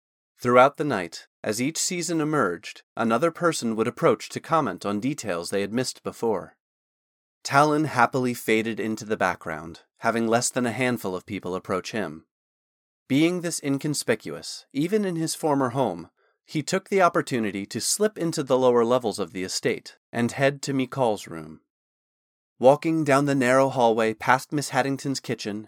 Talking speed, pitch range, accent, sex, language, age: 160 wpm, 110-145 Hz, American, male, English, 30-49